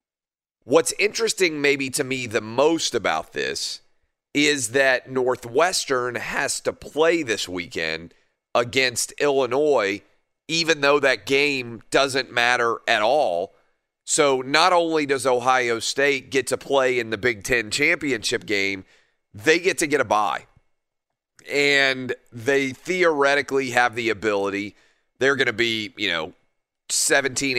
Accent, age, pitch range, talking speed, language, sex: American, 30-49, 115-140 Hz, 135 wpm, English, male